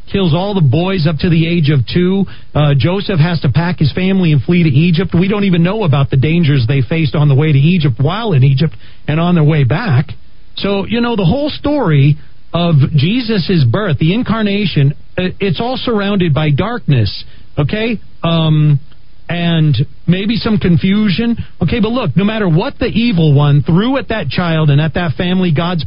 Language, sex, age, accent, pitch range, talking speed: English, male, 40-59, American, 140-195 Hz, 195 wpm